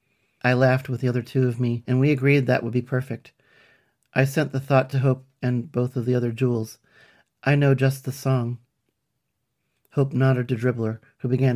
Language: English